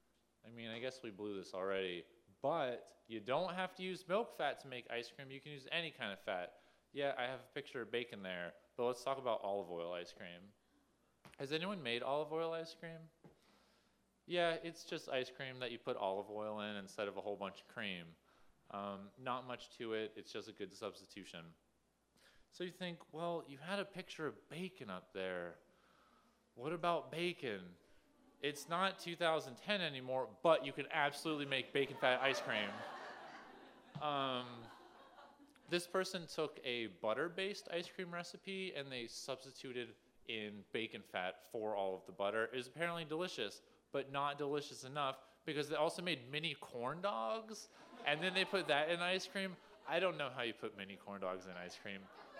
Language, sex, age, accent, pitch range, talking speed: English, male, 30-49, American, 110-170 Hz, 185 wpm